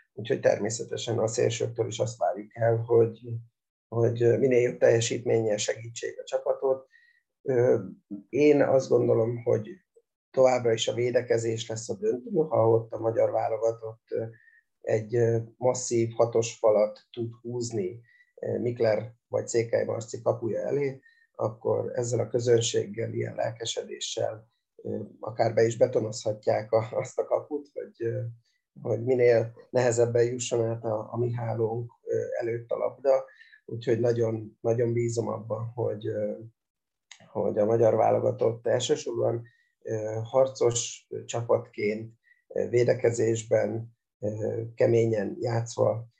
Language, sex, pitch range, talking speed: Hungarian, male, 115-145 Hz, 110 wpm